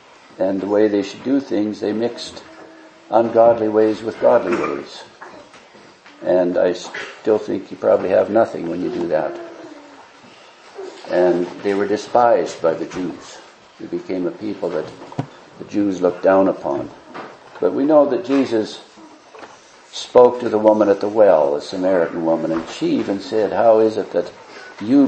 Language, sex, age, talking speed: English, male, 60-79, 160 wpm